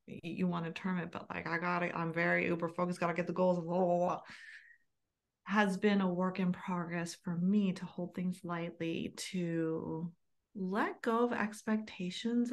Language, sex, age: English, female, 30-49